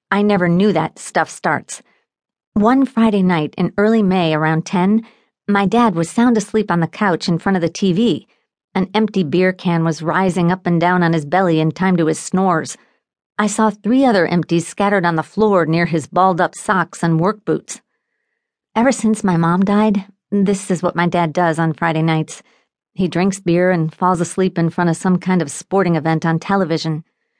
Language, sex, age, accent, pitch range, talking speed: English, female, 50-69, American, 170-210 Hz, 195 wpm